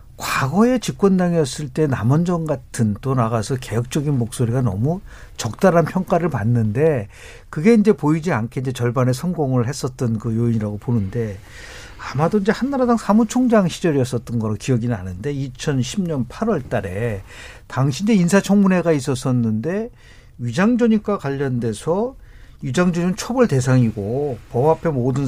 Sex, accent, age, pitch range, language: male, native, 50-69, 120-190 Hz, Korean